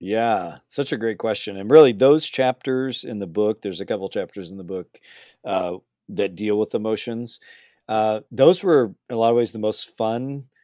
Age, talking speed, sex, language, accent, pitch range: 40-59, 200 wpm, male, English, American, 100-130 Hz